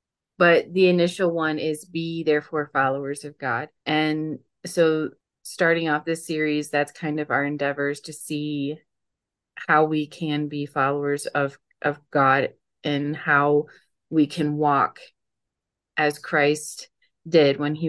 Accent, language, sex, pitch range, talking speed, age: American, English, female, 145-160 Hz, 140 wpm, 30-49